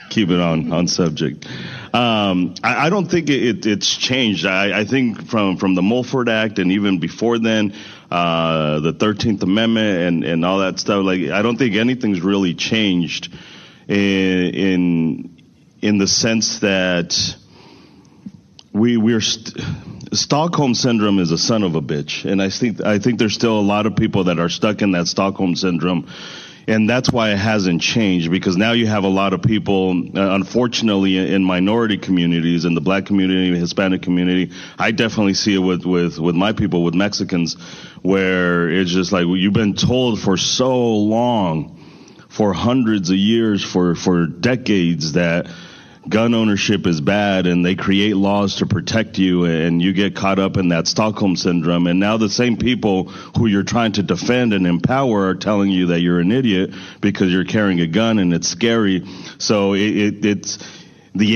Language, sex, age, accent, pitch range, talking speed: English, male, 30-49, American, 90-110 Hz, 175 wpm